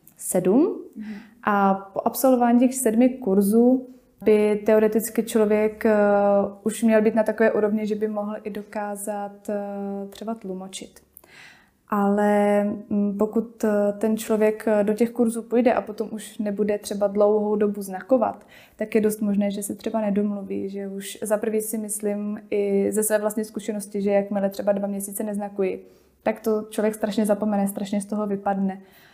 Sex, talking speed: female, 150 wpm